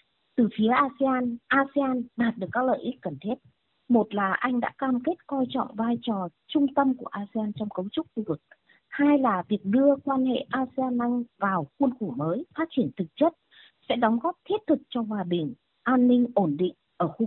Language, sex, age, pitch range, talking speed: Vietnamese, female, 20-39, 195-265 Hz, 205 wpm